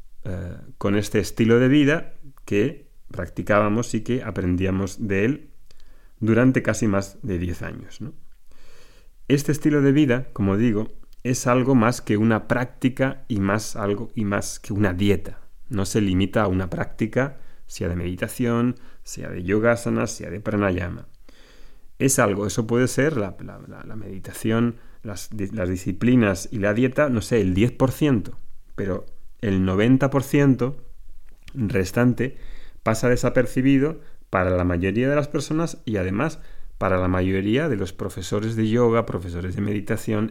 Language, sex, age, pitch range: Spanish, male, 30-49, 100-130 Hz